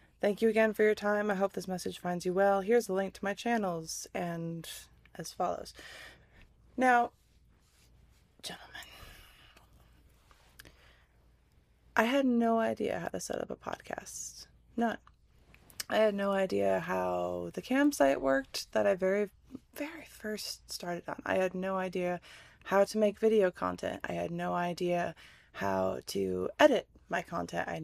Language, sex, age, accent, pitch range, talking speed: English, female, 20-39, American, 160-205 Hz, 150 wpm